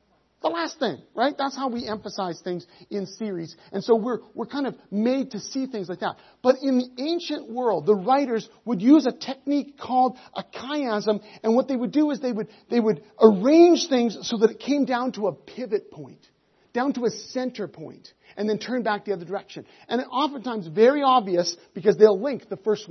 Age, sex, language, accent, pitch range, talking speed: 40-59, male, English, American, 195-255 Hz, 205 wpm